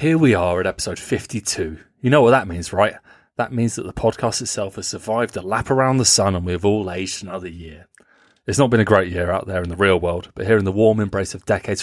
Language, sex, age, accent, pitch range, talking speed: English, male, 30-49, British, 90-115 Hz, 265 wpm